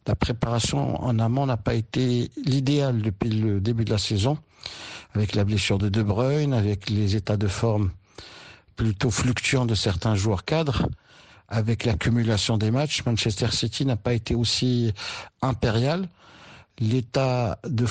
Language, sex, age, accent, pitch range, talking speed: French, male, 60-79, French, 110-130 Hz, 145 wpm